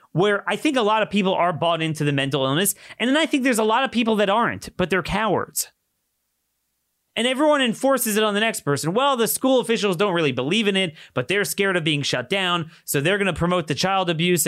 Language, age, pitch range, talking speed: English, 30-49, 120-195 Hz, 245 wpm